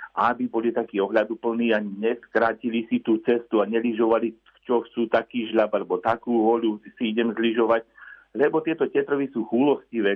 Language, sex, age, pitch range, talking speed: Slovak, male, 50-69, 110-125 Hz, 155 wpm